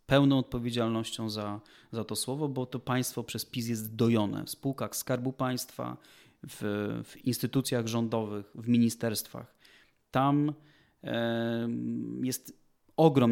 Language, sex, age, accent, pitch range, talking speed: Polish, male, 30-49, native, 115-135 Hz, 115 wpm